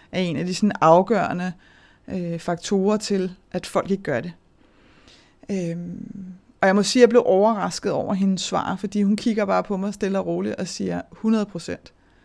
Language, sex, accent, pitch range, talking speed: Danish, female, native, 170-215 Hz, 185 wpm